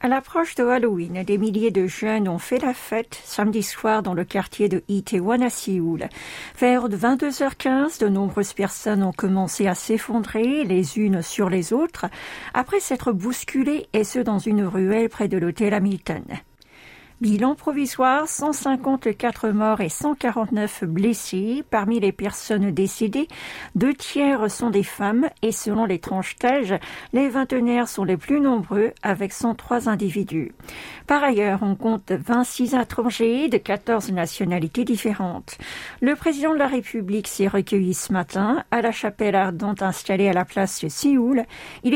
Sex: female